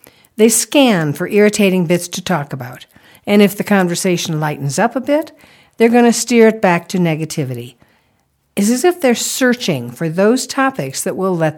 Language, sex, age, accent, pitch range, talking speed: English, female, 60-79, American, 160-235 Hz, 180 wpm